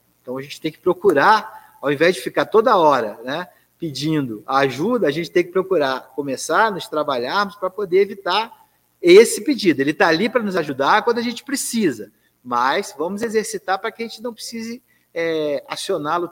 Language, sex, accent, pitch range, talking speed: Portuguese, male, Brazilian, 145-215 Hz, 185 wpm